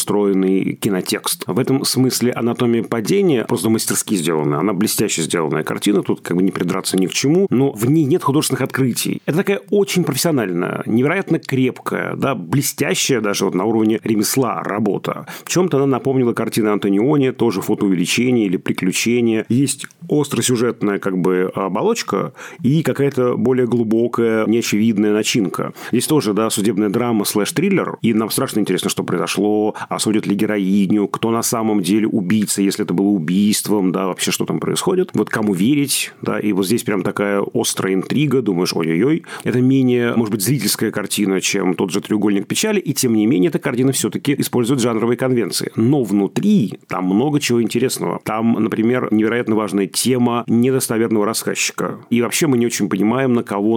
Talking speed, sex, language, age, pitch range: 165 wpm, male, Russian, 40-59, 105-130 Hz